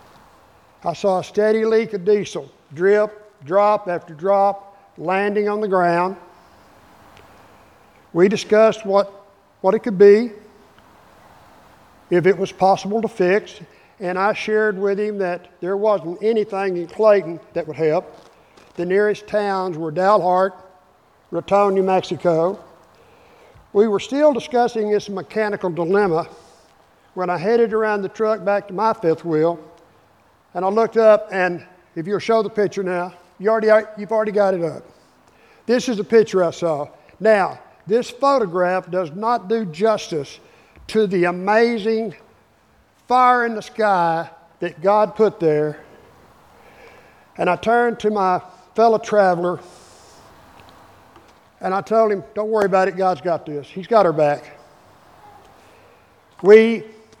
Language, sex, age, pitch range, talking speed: English, male, 60-79, 175-215 Hz, 140 wpm